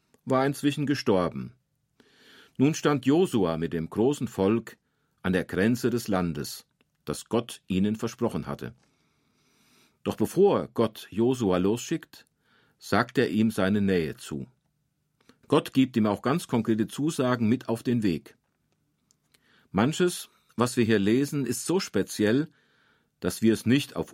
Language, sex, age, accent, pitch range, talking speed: German, male, 40-59, German, 95-130 Hz, 135 wpm